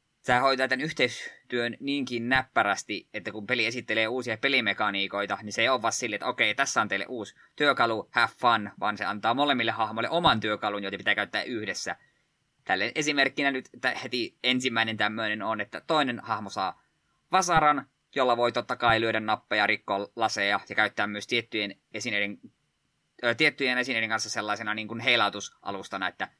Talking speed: 165 wpm